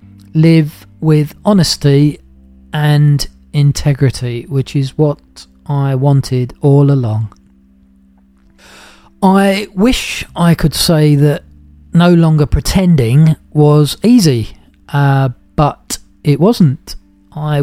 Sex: male